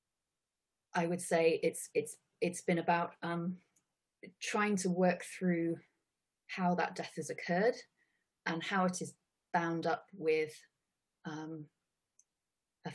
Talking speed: 125 wpm